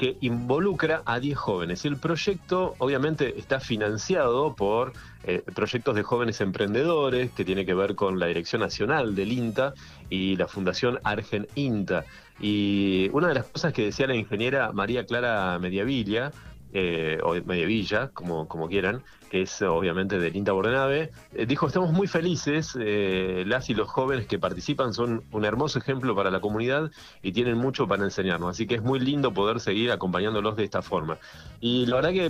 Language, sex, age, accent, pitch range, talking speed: Spanish, male, 30-49, Argentinian, 100-135 Hz, 170 wpm